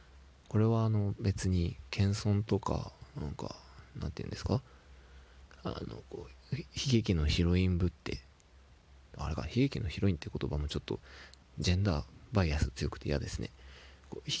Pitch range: 70-100 Hz